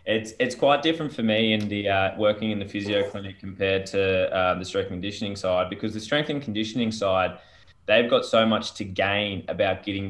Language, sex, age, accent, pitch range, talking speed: English, male, 20-39, Australian, 95-115 Hz, 215 wpm